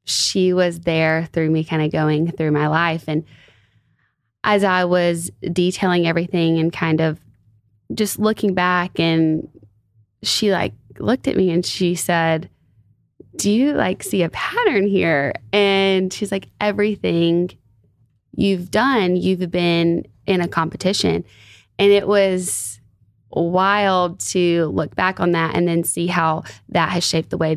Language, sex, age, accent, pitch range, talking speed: English, female, 20-39, American, 155-180 Hz, 150 wpm